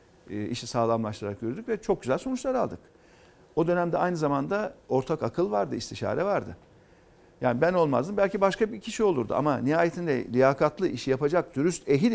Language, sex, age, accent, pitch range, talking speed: Turkish, male, 50-69, native, 135-200 Hz, 160 wpm